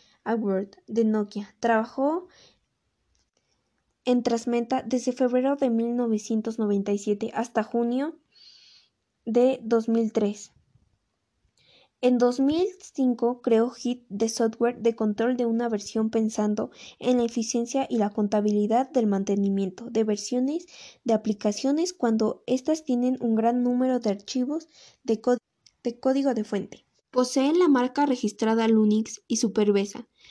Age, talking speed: 10-29, 115 wpm